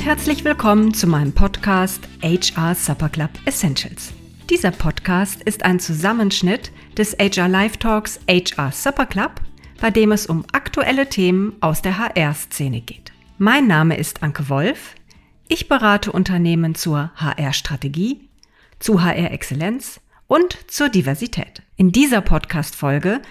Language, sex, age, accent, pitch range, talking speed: German, female, 50-69, German, 165-220 Hz, 125 wpm